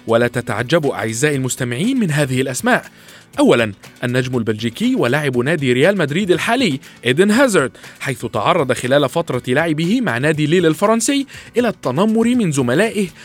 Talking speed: 135 wpm